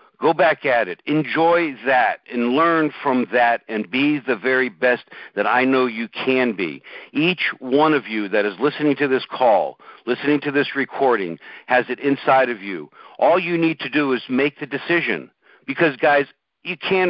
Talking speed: 185 wpm